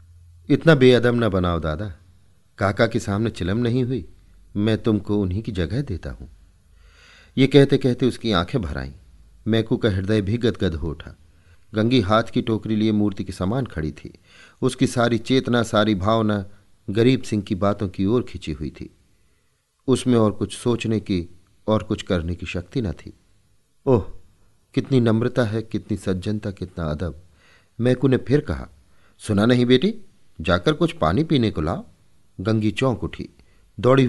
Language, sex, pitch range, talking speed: Hindi, male, 90-120 Hz, 165 wpm